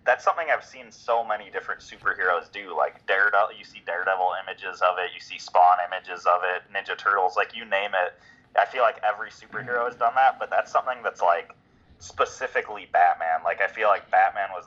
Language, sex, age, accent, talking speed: English, male, 20-39, American, 205 wpm